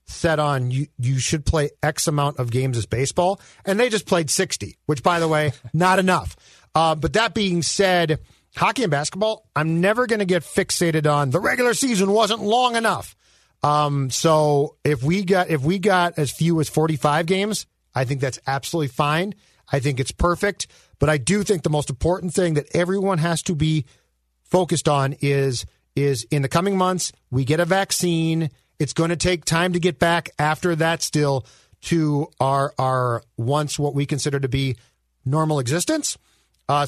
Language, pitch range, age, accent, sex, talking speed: English, 135-175 Hz, 40-59, American, male, 185 wpm